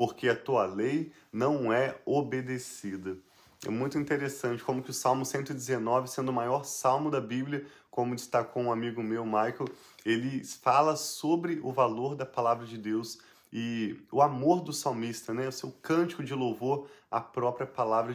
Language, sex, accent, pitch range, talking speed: Portuguese, male, Brazilian, 120-145 Hz, 165 wpm